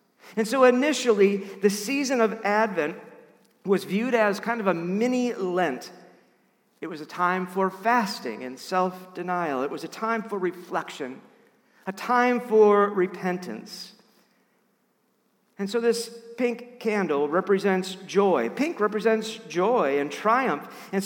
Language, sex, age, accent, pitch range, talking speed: English, male, 50-69, American, 180-230 Hz, 130 wpm